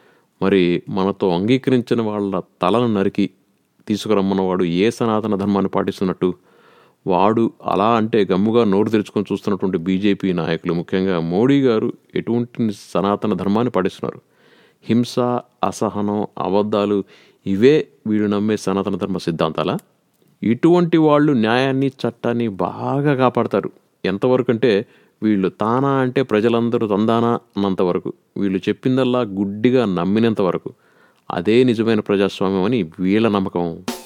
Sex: male